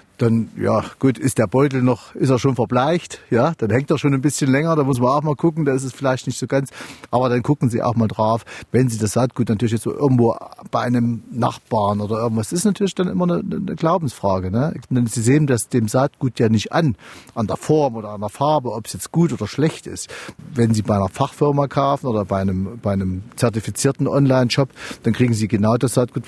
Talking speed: 230 wpm